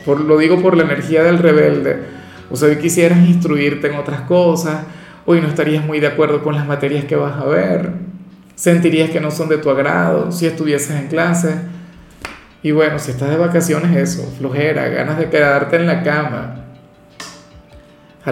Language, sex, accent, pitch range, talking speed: Spanish, male, Venezuelan, 140-170 Hz, 175 wpm